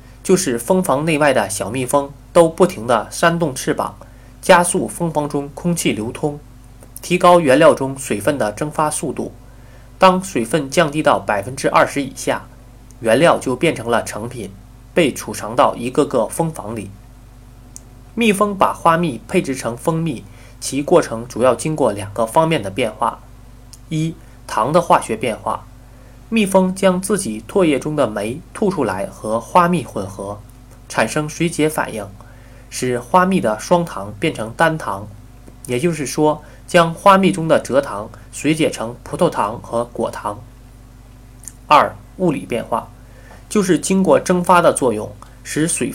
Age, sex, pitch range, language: 20-39, male, 120-165 Hz, Chinese